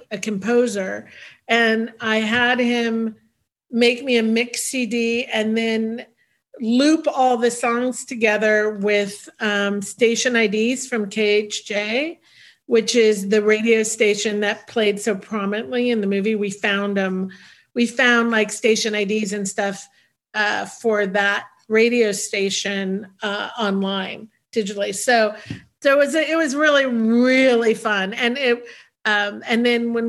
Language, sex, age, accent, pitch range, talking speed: English, female, 50-69, American, 205-240 Hz, 140 wpm